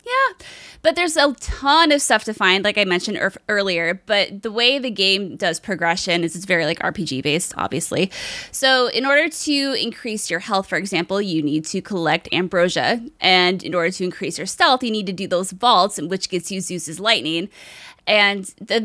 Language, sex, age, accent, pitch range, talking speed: English, female, 20-39, American, 180-245 Hz, 190 wpm